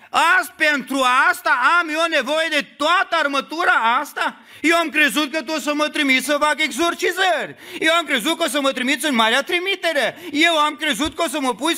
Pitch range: 255-330 Hz